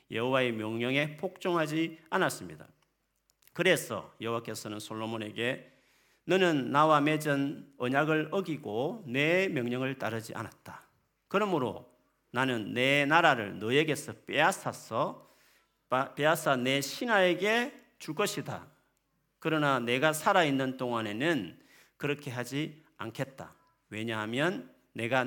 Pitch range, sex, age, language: 120-165 Hz, male, 40-59, Korean